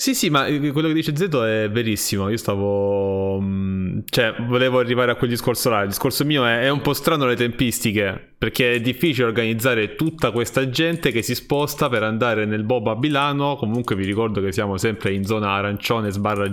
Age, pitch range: 20-39, 105-130 Hz